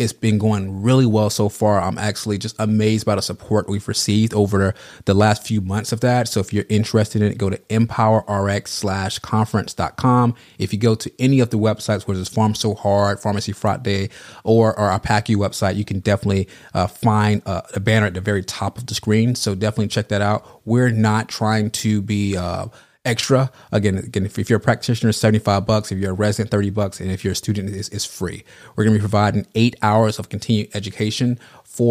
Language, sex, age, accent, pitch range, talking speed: English, male, 30-49, American, 100-115 Hz, 210 wpm